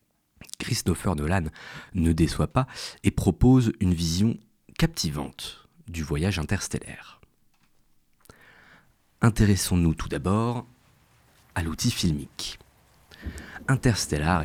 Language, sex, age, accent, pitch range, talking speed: French, male, 40-59, French, 80-120 Hz, 85 wpm